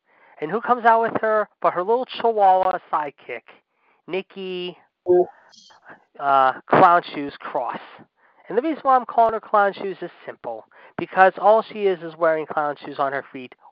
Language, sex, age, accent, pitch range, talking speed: English, male, 30-49, American, 135-180 Hz, 165 wpm